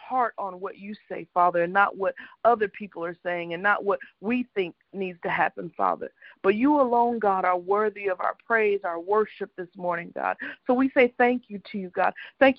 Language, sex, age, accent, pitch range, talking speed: English, female, 50-69, American, 195-250 Hz, 210 wpm